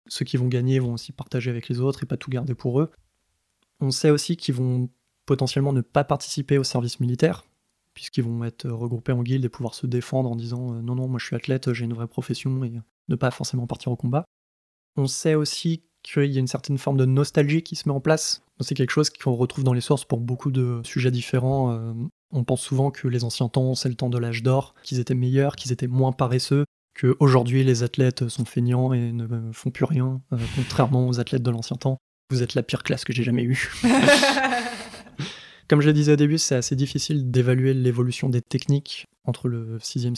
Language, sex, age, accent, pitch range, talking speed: French, male, 20-39, French, 125-140 Hz, 225 wpm